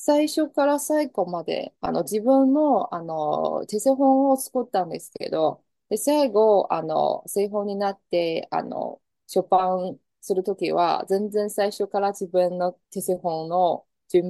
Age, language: 20-39, Japanese